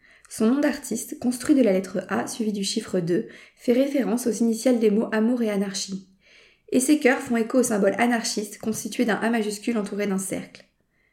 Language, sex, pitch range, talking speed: French, female, 210-255 Hz, 195 wpm